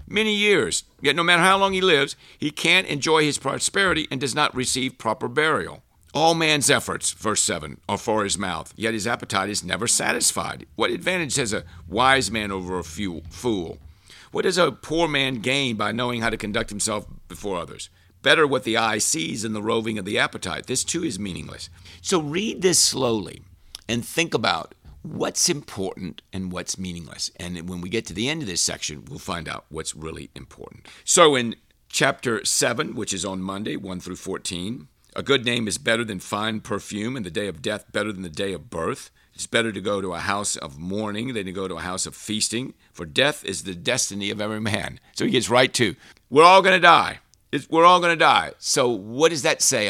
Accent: American